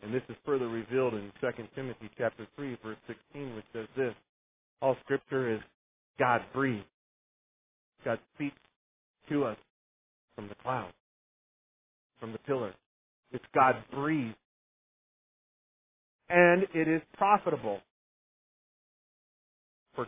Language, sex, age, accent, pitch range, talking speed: English, male, 40-59, American, 110-135 Hz, 115 wpm